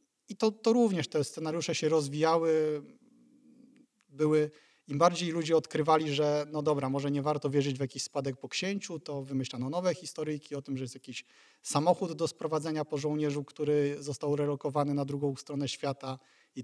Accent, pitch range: native, 140-165 Hz